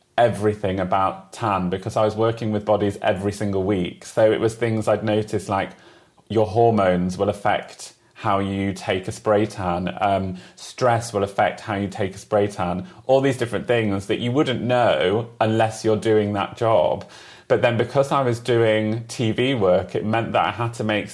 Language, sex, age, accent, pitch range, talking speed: English, male, 30-49, British, 105-120 Hz, 190 wpm